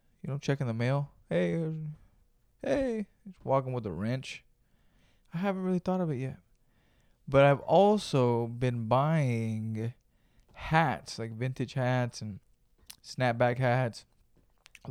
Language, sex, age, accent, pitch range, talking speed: English, male, 20-39, American, 115-145 Hz, 125 wpm